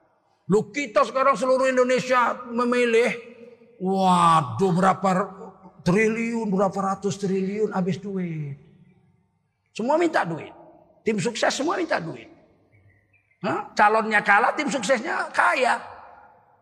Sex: male